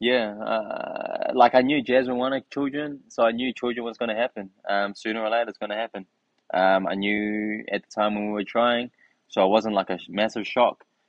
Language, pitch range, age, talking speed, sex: English, 95-110 Hz, 20-39, 220 wpm, male